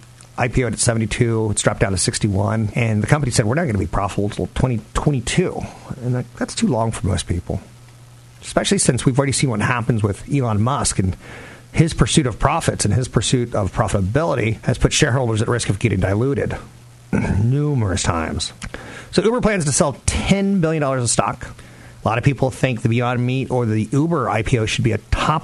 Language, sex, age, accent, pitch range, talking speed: English, male, 40-59, American, 110-140 Hz, 205 wpm